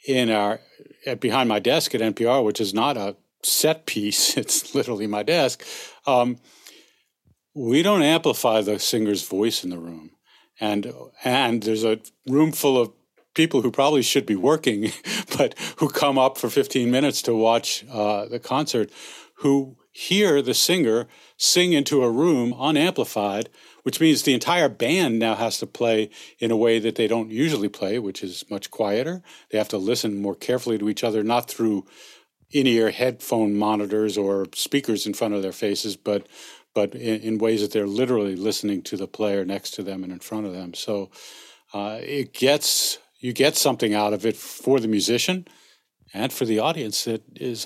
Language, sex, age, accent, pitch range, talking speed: English, male, 50-69, American, 105-130 Hz, 180 wpm